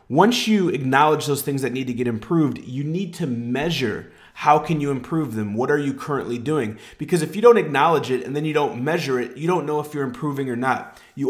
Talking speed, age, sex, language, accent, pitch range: 240 wpm, 30-49, male, English, American, 130-155 Hz